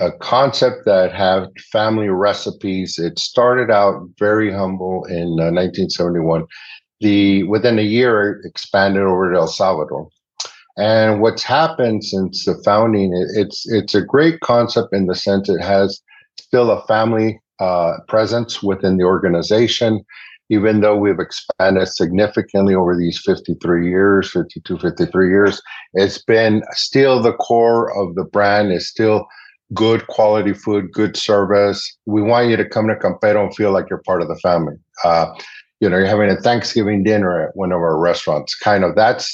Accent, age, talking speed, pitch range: American, 50-69, 165 wpm, 95-110 Hz